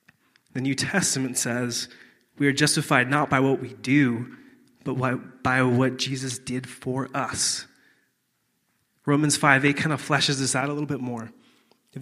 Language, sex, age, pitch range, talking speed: English, male, 20-39, 125-150 Hz, 160 wpm